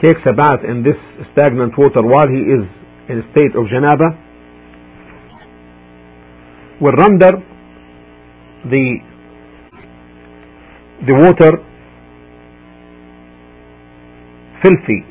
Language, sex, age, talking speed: English, male, 50-69, 85 wpm